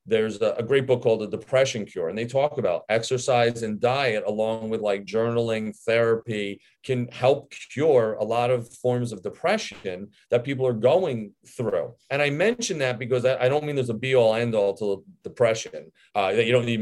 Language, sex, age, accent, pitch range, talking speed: English, male, 40-59, American, 110-145 Hz, 195 wpm